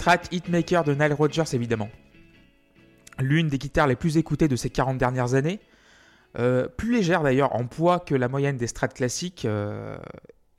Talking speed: 170 wpm